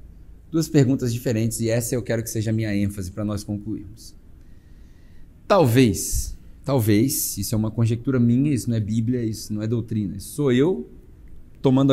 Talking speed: 170 wpm